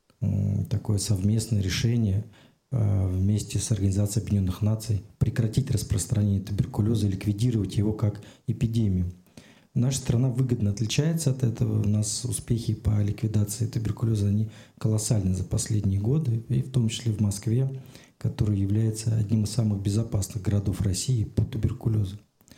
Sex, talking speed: male, 130 wpm